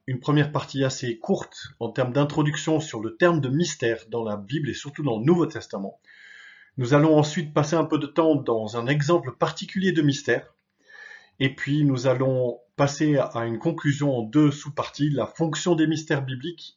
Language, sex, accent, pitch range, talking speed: French, male, French, 130-165 Hz, 185 wpm